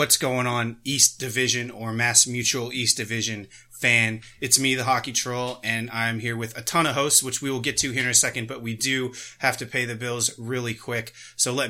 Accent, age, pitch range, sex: American, 30-49, 105-125 Hz, male